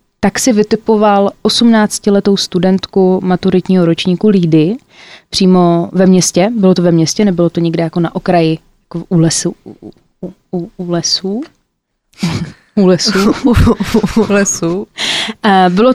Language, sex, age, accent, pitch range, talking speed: Czech, female, 20-39, native, 180-210 Hz, 115 wpm